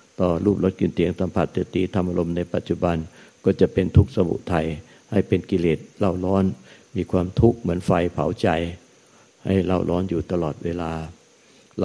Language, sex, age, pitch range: Thai, male, 60-79, 85-100 Hz